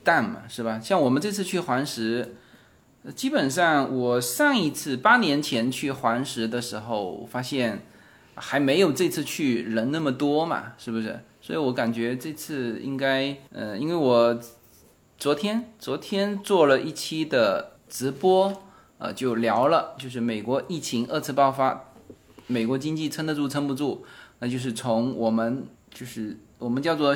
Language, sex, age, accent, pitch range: Chinese, male, 20-39, native, 120-160 Hz